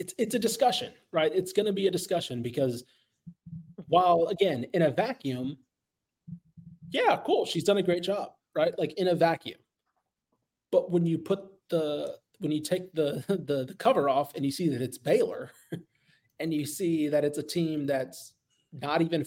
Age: 30-49